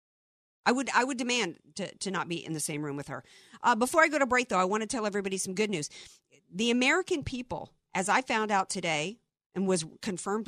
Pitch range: 185-275 Hz